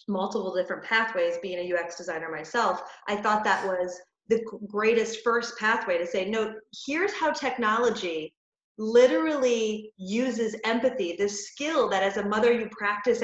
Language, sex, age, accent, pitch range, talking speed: English, female, 30-49, American, 205-265 Hz, 150 wpm